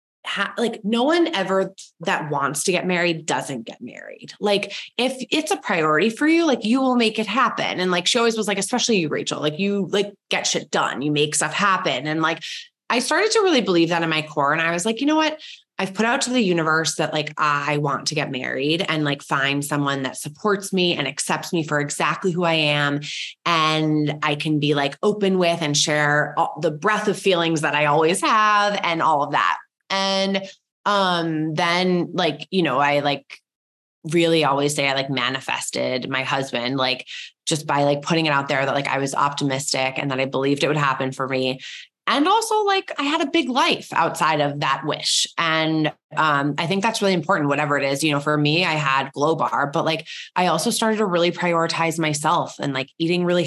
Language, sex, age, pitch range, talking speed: English, female, 20-39, 145-195 Hz, 215 wpm